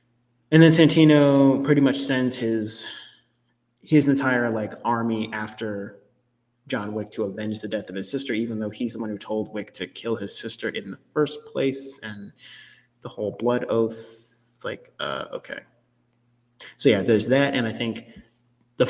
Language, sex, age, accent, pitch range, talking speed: English, male, 20-39, American, 105-130 Hz, 170 wpm